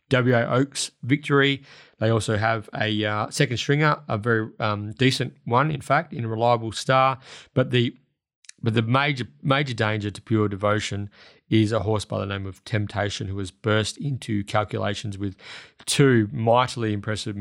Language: English